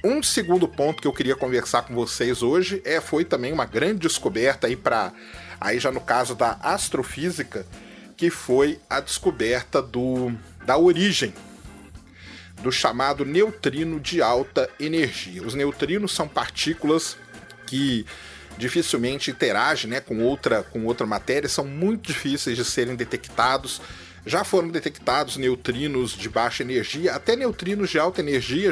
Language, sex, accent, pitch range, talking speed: Portuguese, male, Brazilian, 125-185 Hz, 135 wpm